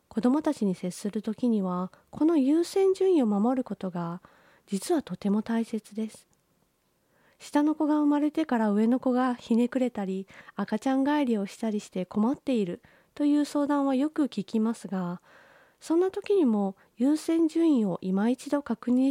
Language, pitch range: Japanese, 205-285 Hz